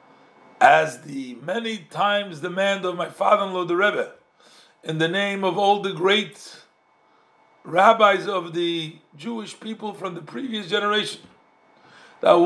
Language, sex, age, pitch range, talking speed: English, male, 50-69, 175-225 Hz, 130 wpm